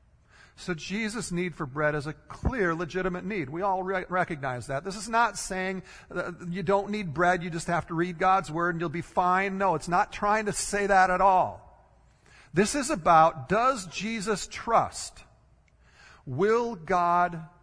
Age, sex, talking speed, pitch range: 50-69, male, 175 wpm, 160-200 Hz